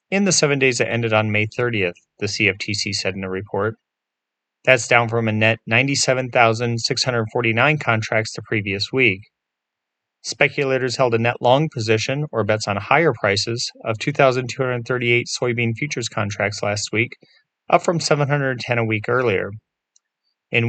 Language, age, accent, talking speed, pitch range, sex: English, 30-49, American, 145 wpm, 110-135 Hz, male